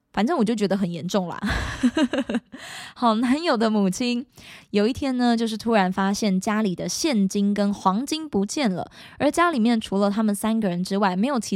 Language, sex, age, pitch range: Chinese, female, 20-39, 190-245 Hz